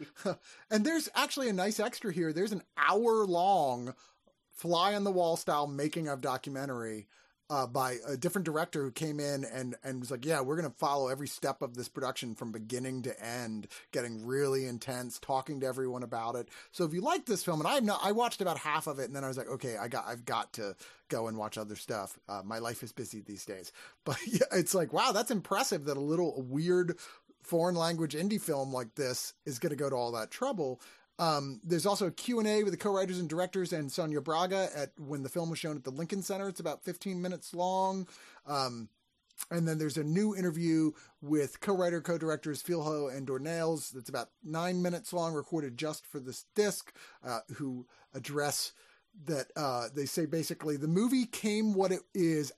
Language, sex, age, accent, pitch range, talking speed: English, male, 30-49, American, 135-180 Hz, 210 wpm